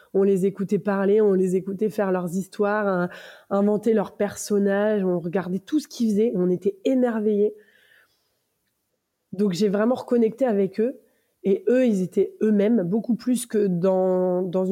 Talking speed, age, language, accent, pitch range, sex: 160 wpm, 20-39, French, French, 190-220 Hz, female